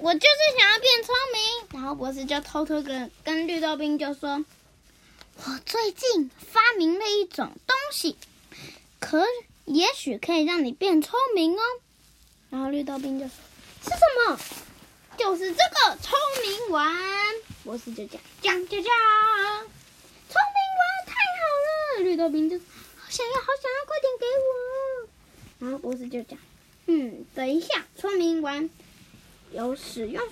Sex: female